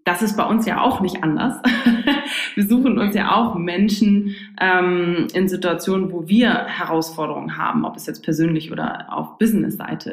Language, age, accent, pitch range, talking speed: German, 20-39, German, 175-205 Hz, 165 wpm